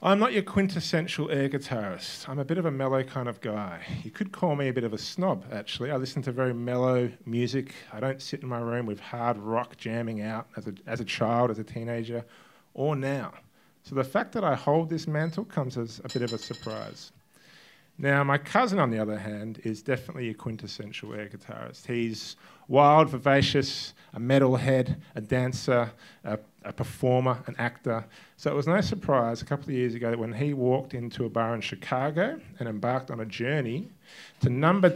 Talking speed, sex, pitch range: 205 wpm, male, 115-150 Hz